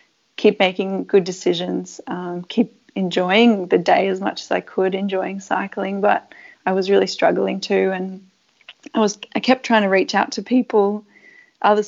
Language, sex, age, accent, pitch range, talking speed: English, female, 20-39, Australian, 190-220 Hz, 170 wpm